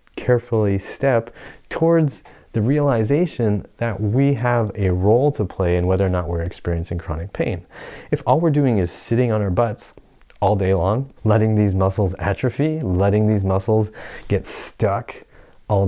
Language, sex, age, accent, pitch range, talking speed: English, male, 30-49, American, 90-115 Hz, 160 wpm